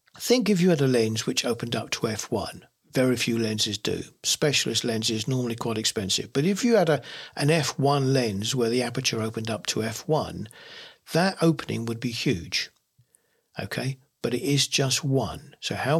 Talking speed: 180 wpm